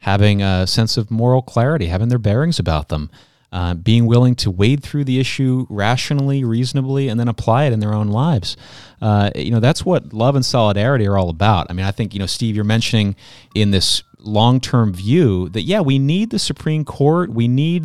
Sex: male